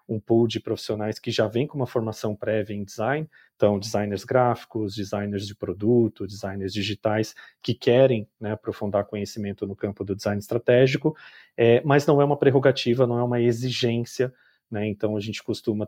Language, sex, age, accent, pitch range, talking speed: Portuguese, male, 40-59, Brazilian, 105-125 Hz, 170 wpm